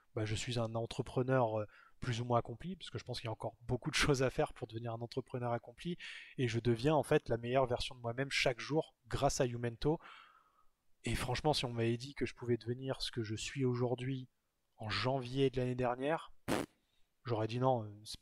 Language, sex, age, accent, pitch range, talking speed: French, male, 20-39, French, 120-140 Hz, 220 wpm